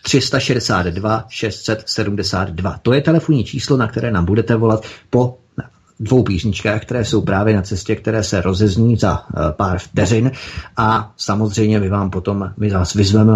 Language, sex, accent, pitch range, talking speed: Czech, male, native, 100-115 Hz, 140 wpm